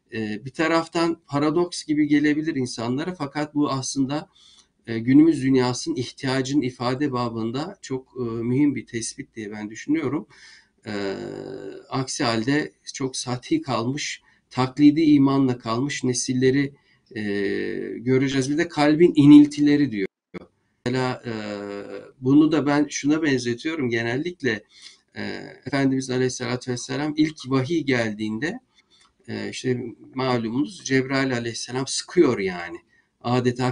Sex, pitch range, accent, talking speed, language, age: male, 120-145 Hz, native, 100 wpm, Turkish, 50-69